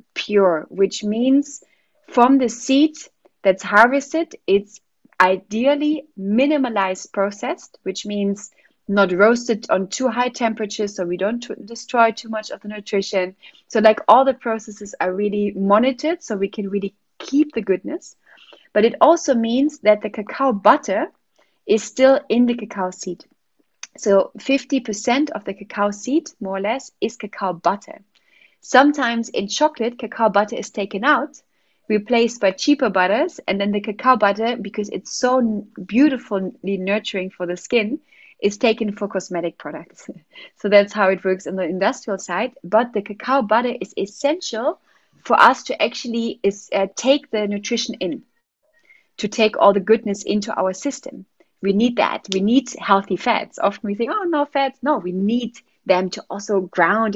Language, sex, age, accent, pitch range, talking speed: English, female, 30-49, German, 200-265 Hz, 160 wpm